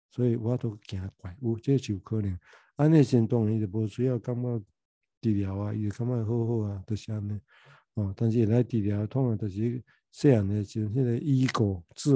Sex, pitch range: male, 105-125 Hz